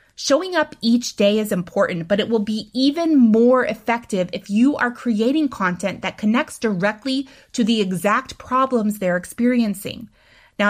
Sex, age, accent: female, 30-49, American